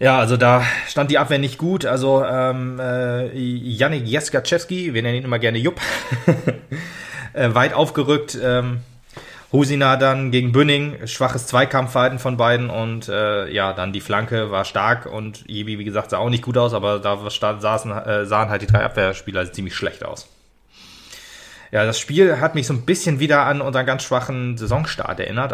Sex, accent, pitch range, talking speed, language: male, German, 110-135 Hz, 170 wpm, German